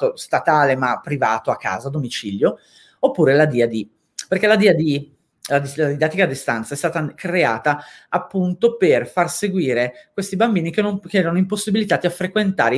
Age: 40-59